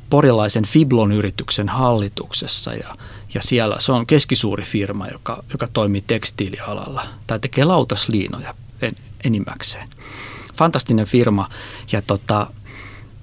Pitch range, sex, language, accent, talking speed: 105-130 Hz, male, Finnish, native, 105 wpm